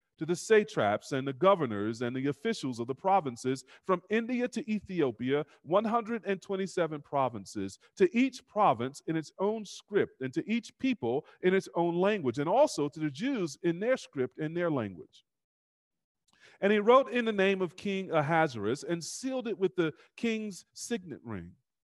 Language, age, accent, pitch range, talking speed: English, 40-59, American, 140-205 Hz, 165 wpm